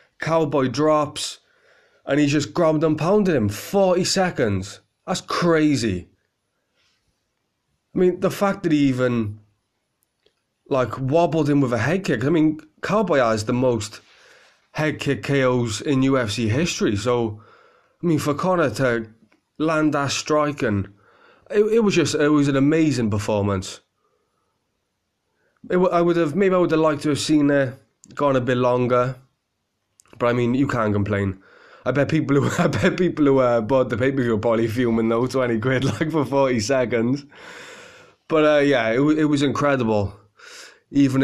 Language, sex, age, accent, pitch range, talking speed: English, male, 20-39, British, 115-150 Hz, 160 wpm